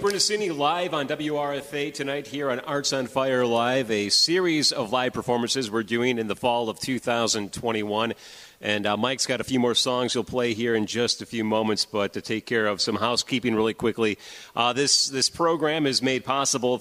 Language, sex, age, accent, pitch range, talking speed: English, male, 30-49, American, 110-135 Hz, 200 wpm